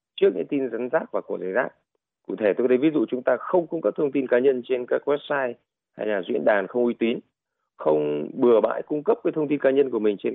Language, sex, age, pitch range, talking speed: Vietnamese, male, 20-39, 110-155 Hz, 275 wpm